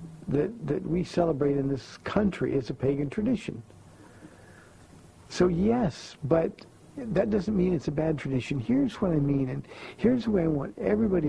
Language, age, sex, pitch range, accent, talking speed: English, 50-69, male, 140-180 Hz, American, 170 wpm